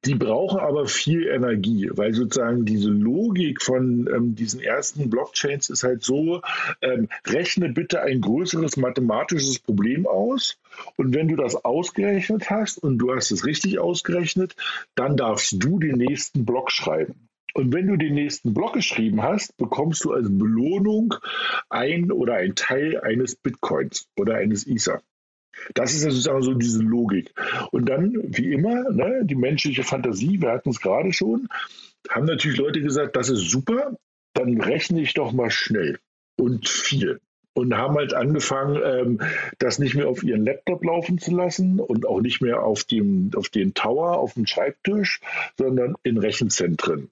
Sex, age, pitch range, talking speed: male, 50-69, 125-180 Hz, 160 wpm